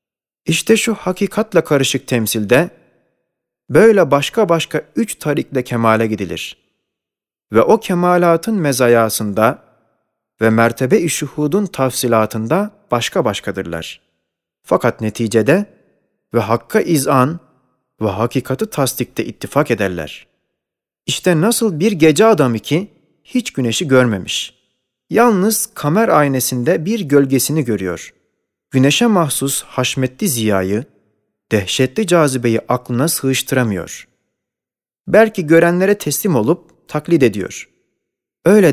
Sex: male